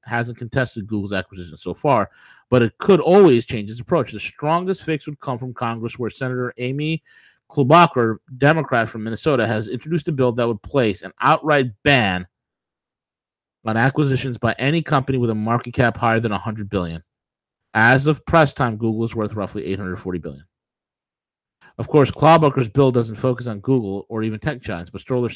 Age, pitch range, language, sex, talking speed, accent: 30-49, 110-140 Hz, English, male, 175 wpm, American